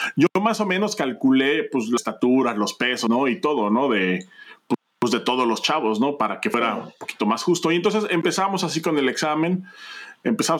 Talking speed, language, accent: 205 wpm, Spanish, Mexican